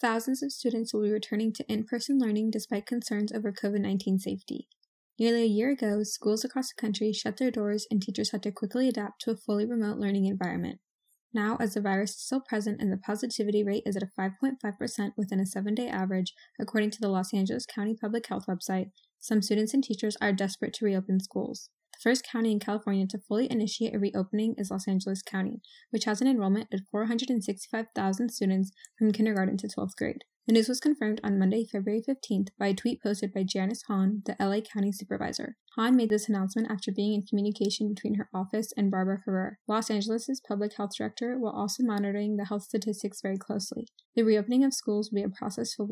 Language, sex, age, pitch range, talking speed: English, female, 10-29, 200-230 Hz, 200 wpm